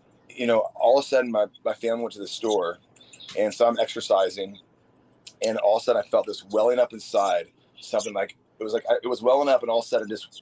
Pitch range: 105-145 Hz